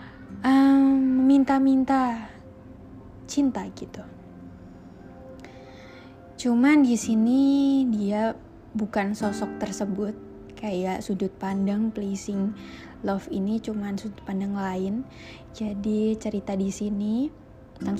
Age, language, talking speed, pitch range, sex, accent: 20-39, Indonesian, 90 wpm, 190-230 Hz, female, native